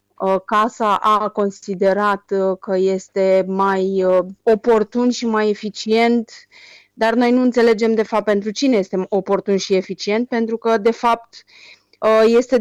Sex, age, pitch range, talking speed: female, 30-49, 195-235 Hz, 130 wpm